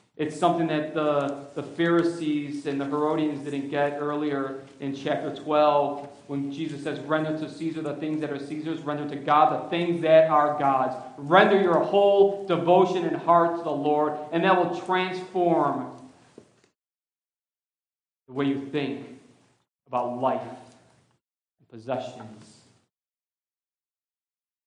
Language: English